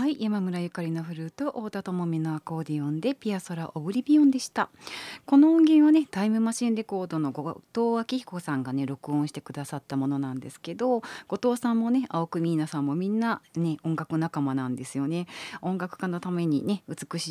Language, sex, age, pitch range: Japanese, female, 40-59, 150-210 Hz